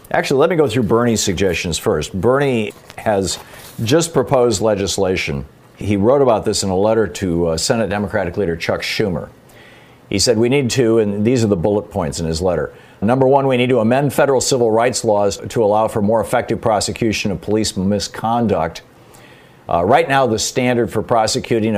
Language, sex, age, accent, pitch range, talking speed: English, male, 50-69, American, 95-120 Hz, 185 wpm